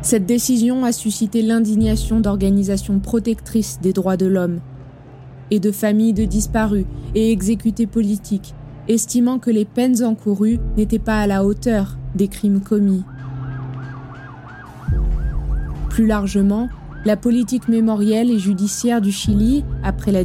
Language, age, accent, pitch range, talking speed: French, 20-39, French, 185-225 Hz, 125 wpm